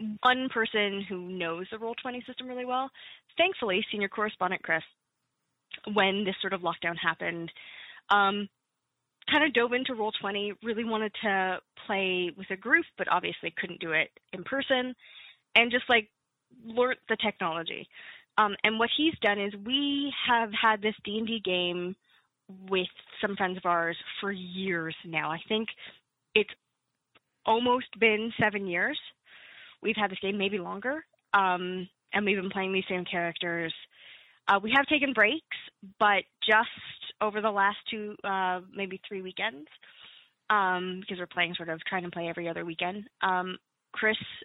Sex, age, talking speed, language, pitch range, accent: female, 20-39, 160 wpm, English, 185-235 Hz, American